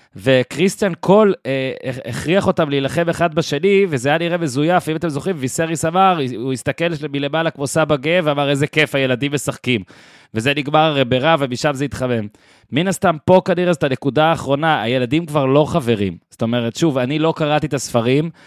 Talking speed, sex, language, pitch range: 165 wpm, male, Hebrew, 120-155 Hz